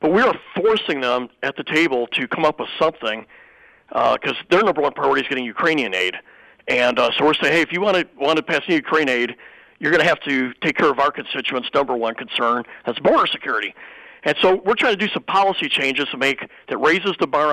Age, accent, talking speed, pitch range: 50-69, American, 235 wpm, 135-170 Hz